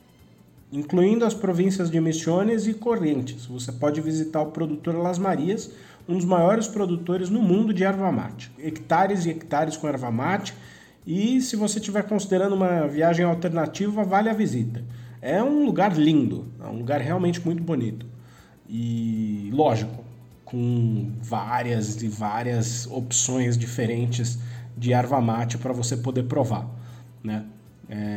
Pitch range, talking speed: 115-170 Hz, 145 wpm